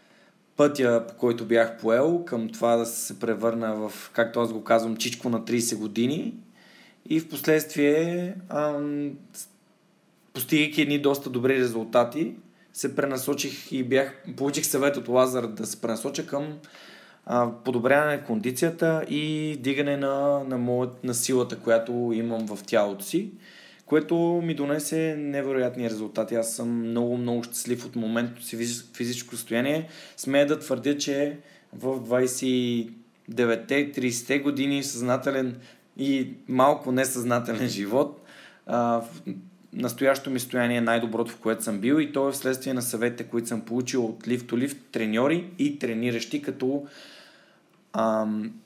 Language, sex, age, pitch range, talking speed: Bulgarian, male, 20-39, 115-145 Hz, 130 wpm